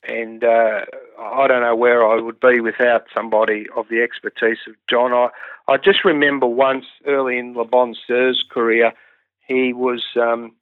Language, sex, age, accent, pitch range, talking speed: English, male, 50-69, Australian, 120-135 Hz, 170 wpm